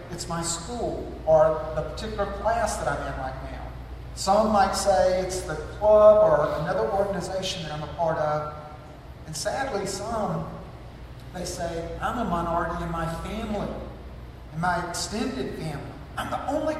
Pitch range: 155-215 Hz